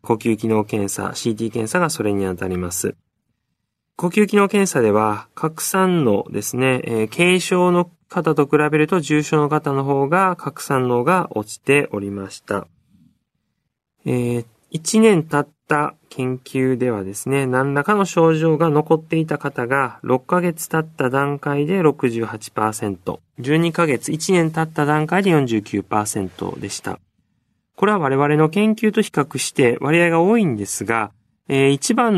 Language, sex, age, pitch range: Japanese, male, 20-39, 110-165 Hz